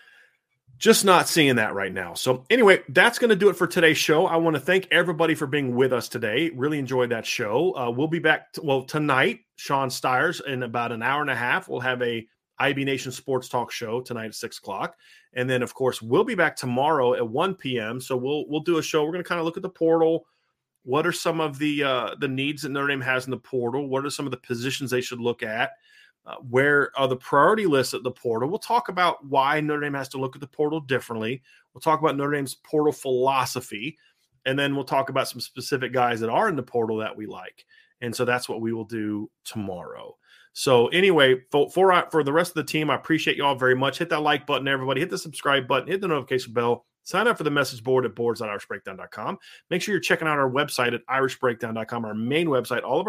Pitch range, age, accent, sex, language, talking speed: 125-160 Hz, 30-49, American, male, English, 240 wpm